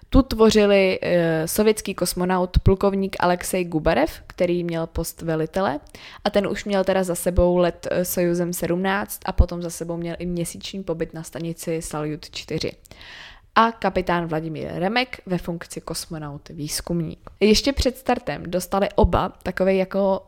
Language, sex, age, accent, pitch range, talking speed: Czech, female, 20-39, native, 170-195 Hz, 140 wpm